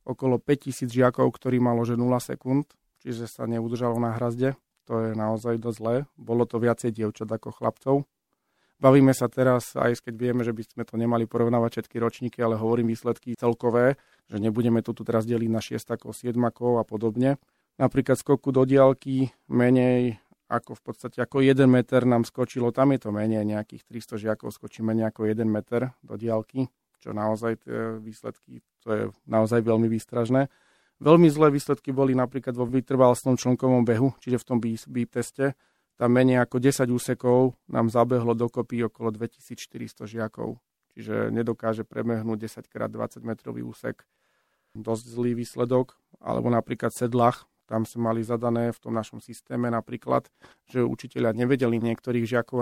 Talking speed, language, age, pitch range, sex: 160 wpm, Slovak, 40-59, 115-125 Hz, male